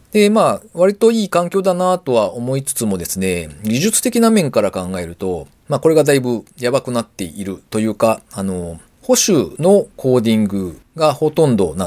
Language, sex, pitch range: Japanese, male, 100-155 Hz